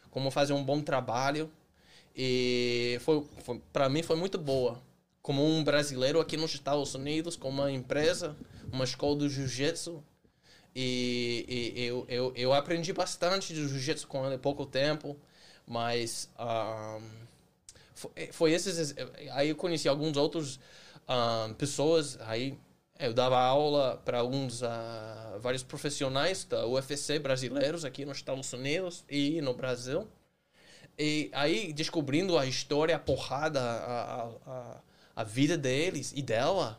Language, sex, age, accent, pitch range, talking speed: Portuguese, male, 10-29, Brazilian, 125-150 Hz, 140 wpm